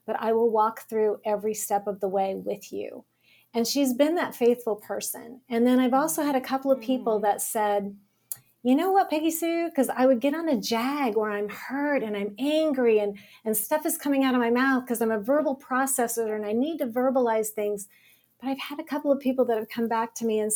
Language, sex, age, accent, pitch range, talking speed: English, female, 40-59, American, 215-265 Hz, 235 wpm